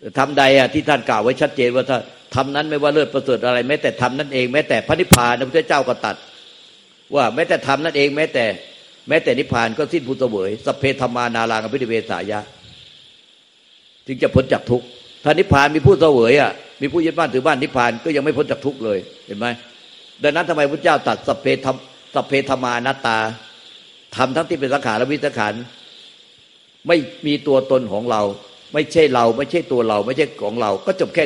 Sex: male